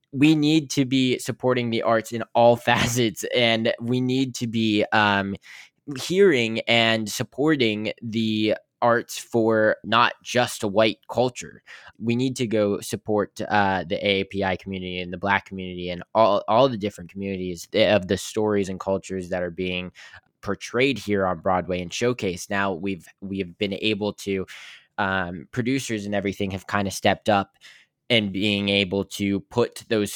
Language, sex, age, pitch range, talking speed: English, male, 10-29, 95-120 Hz, 160 wpm